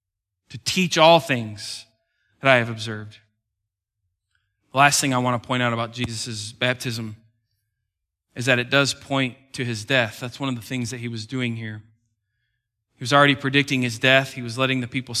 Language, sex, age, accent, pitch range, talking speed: English, male, 20-39, American, 120-150 Hz, 190 wpm